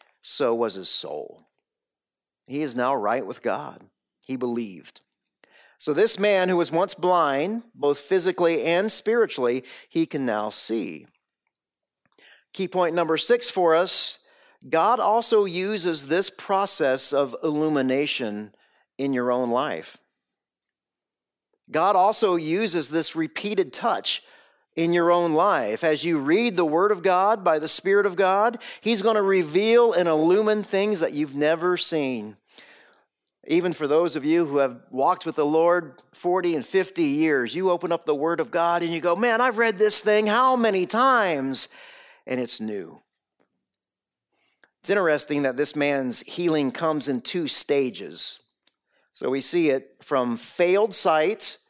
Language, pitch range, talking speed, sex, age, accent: English, 145-200 Hz, 150 wpm, male, 40-59, American